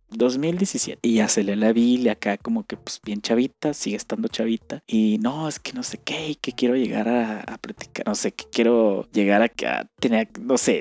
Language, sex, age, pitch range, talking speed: Spanish, male, 20-39, 115-155 Hz, 220 wpm